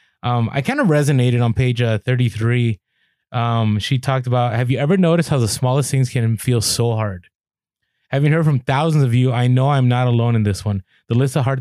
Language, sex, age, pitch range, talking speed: English, male, 20-39, 115-150 Hz, 220 wpm